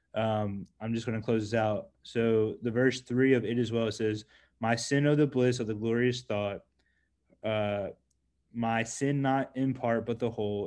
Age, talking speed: 20-39, 190 wpm